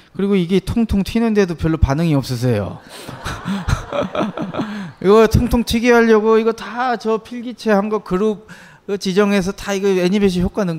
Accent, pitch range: native, 150-225 Hz